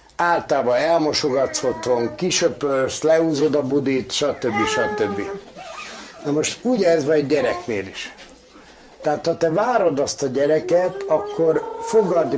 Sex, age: male, 60-79